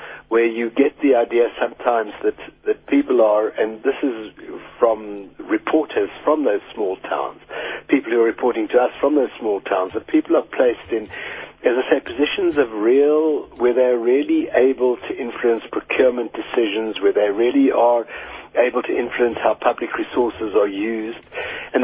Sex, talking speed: male, 170 wpm